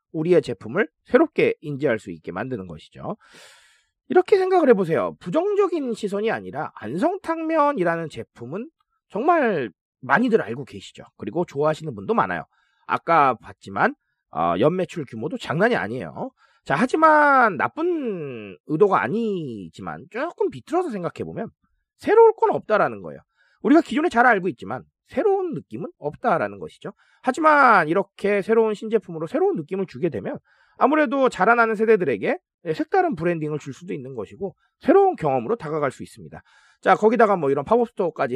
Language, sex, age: Korean, male, 30-49